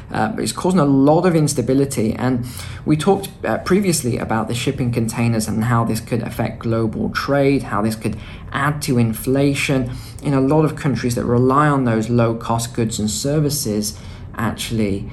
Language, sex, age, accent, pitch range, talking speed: English, male, 20-39, British, 110-140 Hz, 170 wpm